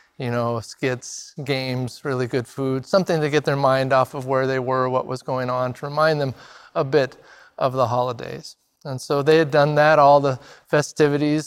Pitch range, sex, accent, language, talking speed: 125-145 Hz, male, American, English, 200 wpm